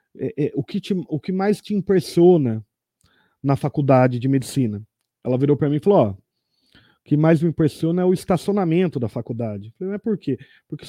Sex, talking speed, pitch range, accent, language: male, 205 wpm, 130-175 Hz, Brazilian, Portuguese